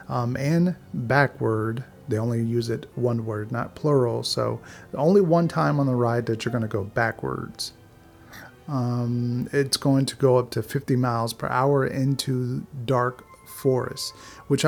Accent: American